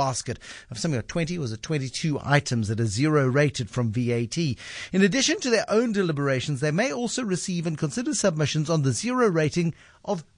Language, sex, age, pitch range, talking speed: English, male, 50-69, 120-160 Hz, 195 wpm